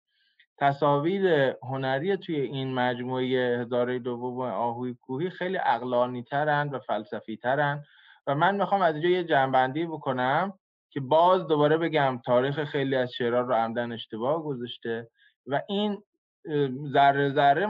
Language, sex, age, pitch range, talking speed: Persian, male, 20-39, 125-155 Hz, 135 wpm